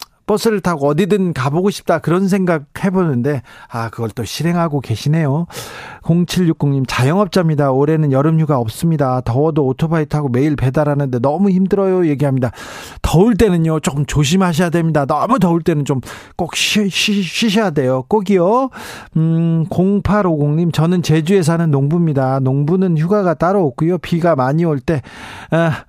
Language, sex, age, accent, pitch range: Korean, male, 40-59, native, 130-170 Hz